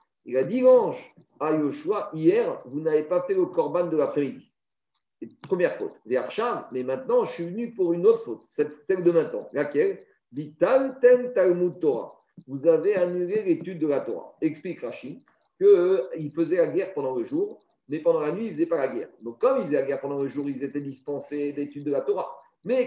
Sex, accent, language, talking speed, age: male, French, French, 210 wpm, 50-69